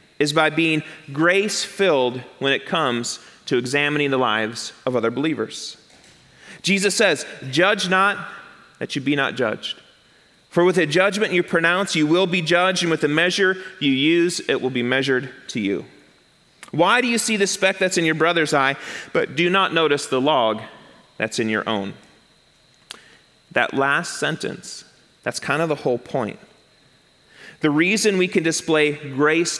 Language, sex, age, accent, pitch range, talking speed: English, male, 30-49, American, 150-195 Hz, 165 wpm